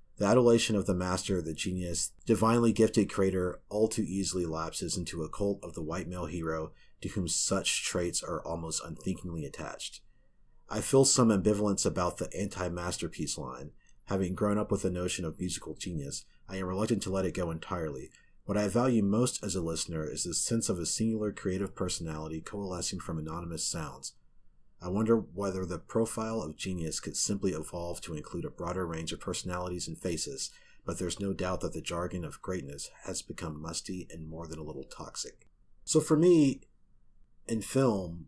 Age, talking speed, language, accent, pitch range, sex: 30-49, 180 wpm, English, American, 85-110 Hz, male